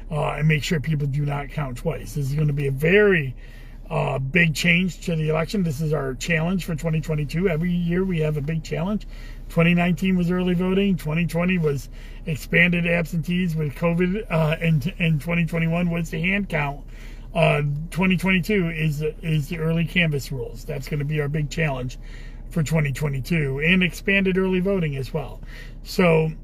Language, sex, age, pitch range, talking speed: English, male, 40-59, 135-170 Hz, 175 wpm